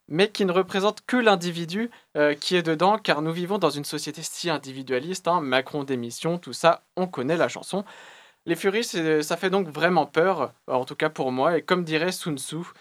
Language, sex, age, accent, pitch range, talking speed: French, male, 20-39, French, 145-195 Hz, 200 wpm